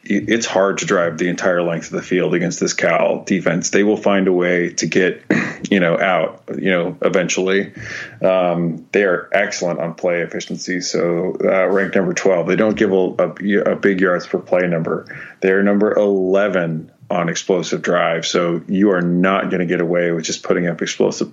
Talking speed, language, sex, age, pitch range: 190 wpm, English, male, 30-49, 85-100 Hz